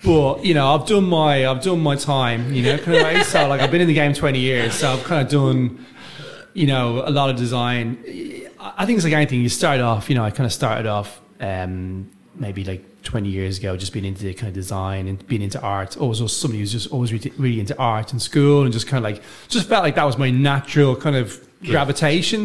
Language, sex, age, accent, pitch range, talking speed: English, male, 30-49, British, 100-140 Hz, 245 wpm